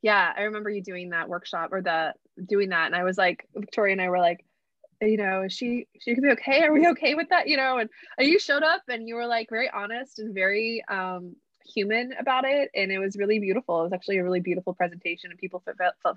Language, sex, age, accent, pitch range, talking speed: English, female, 20-39, American, 180-240 Hz, 250 wpm